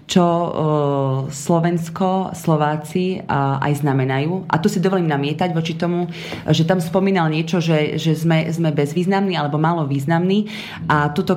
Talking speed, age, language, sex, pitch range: 130 wpm, 30-49, Slovak, female, 150-180 Hz